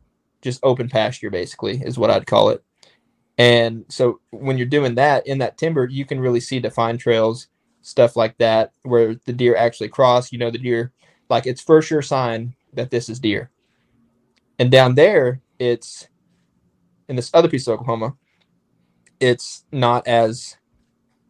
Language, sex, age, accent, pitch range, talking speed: English, male, 20-39, American, 115-130 Hz, 165 wpm